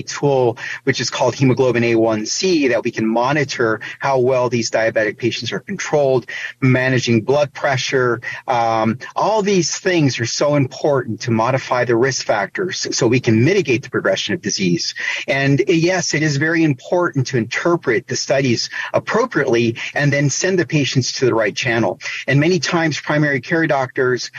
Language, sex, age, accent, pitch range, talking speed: English, male, 40-59, American, 120-150 Hz, 160 wpm